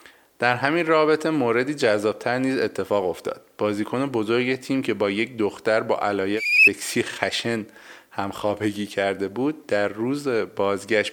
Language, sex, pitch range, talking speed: Persian, male, 100-125 Hz, 135 wpm